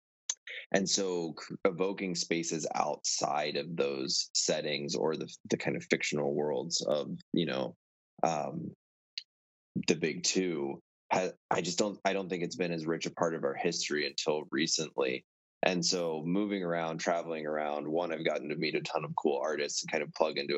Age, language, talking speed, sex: 20-39, English, 180 wpm, male